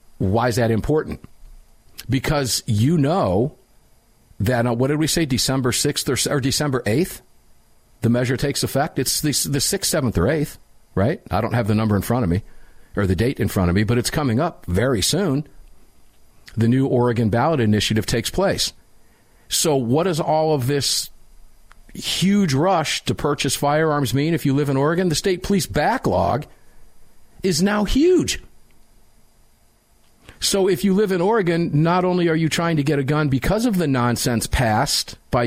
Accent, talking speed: American, 180 wpm